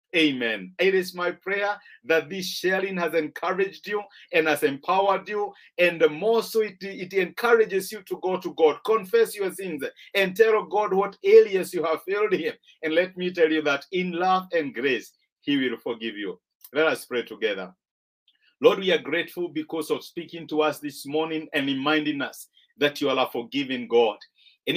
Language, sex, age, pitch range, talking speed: English, male, 50-69, 160-205 Hz, 185 wpm